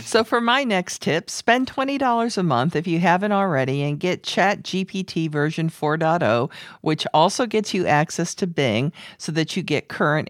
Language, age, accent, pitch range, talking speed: English, 50-69, American, 150-200 Hz, 180 wpm